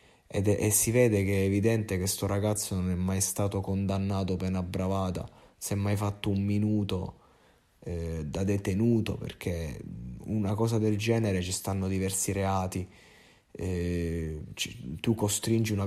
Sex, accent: male, native